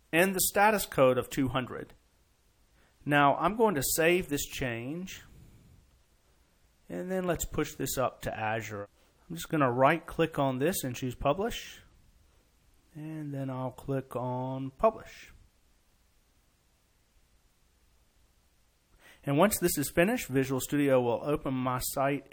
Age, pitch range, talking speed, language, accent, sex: 40-59, 110-150 Hz, 130 wpm, English, American, male